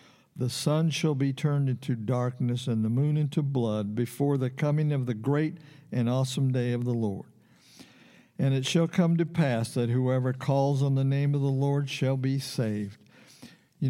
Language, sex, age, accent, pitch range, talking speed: English, male, 60-79, American, 120-150 Hz, 185 wpm